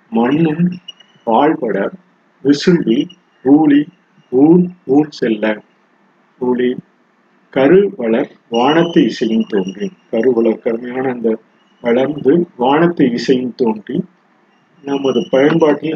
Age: 50-69